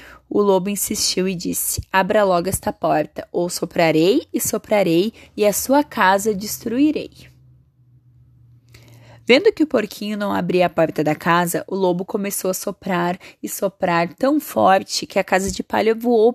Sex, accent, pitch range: female, Brazilian, 175-230 Hz